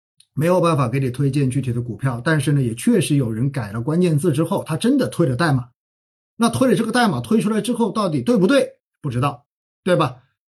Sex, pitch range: male, 125-185 Hz